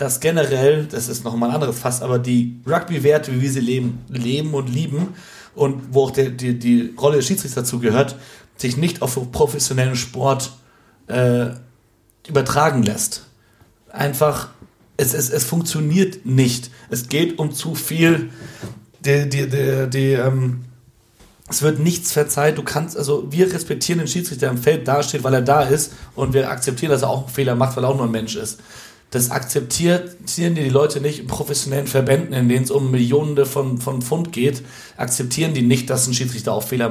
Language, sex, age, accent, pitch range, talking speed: German, male, 40-59, German, 125-150 Hz, 185 wpm